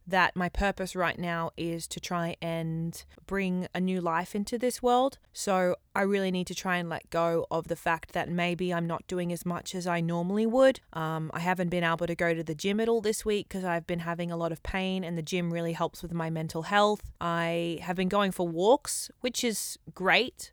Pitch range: 170-205 Hz